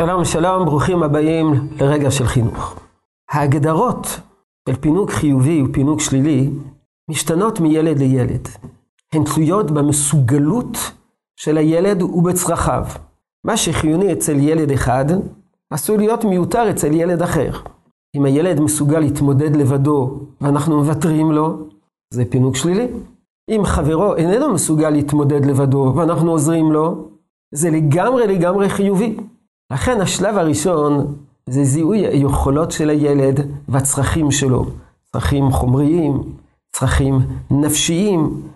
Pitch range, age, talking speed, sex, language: 140-175 Hz, 50-69, 110 wpm, male, Hebrew